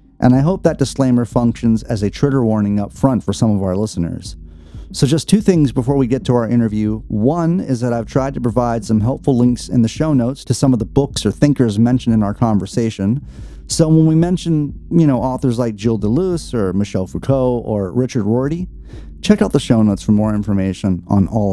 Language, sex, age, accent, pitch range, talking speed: English, male, 30-49, American, 100-135 Hz, 215 wpm